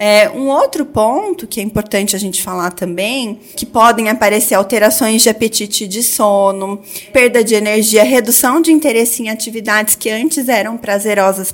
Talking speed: 165 wpm